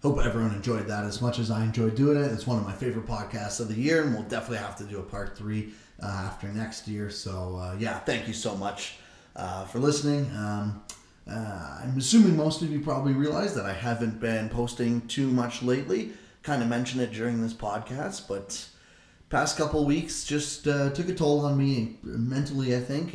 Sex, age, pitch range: male, 20-39, 105-135 Hz